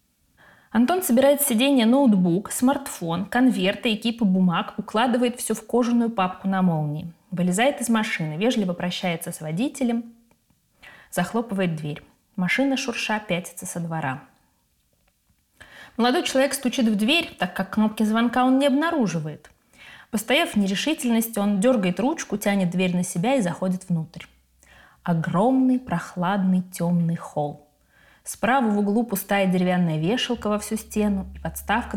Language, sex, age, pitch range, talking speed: Russian, female, 20-39, 180-235 Hz, 130 wpm